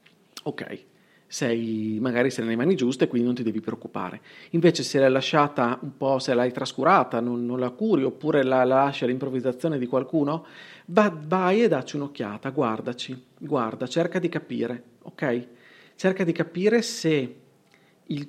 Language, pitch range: Italian, 125-165 Hz